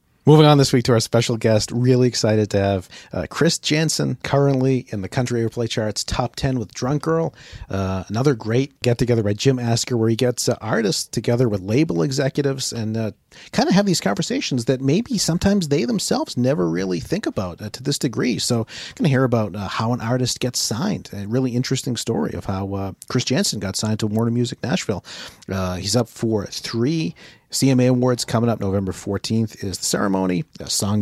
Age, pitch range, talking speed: 40-59, 100-130 Hz, 200 wpm